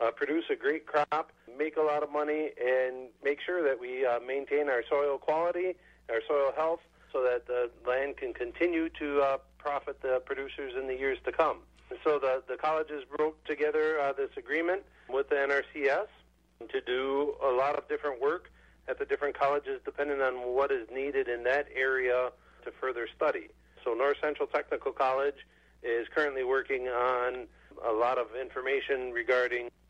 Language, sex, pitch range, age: English, male, 125-160 Hz, 50-69